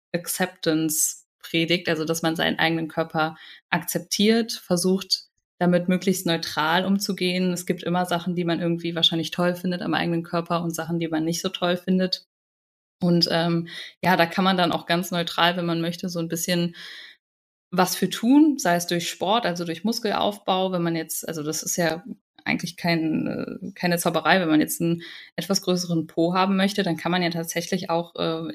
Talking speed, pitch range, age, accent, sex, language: 185 wpm, 165-190 Hz, 20-39, German, female, German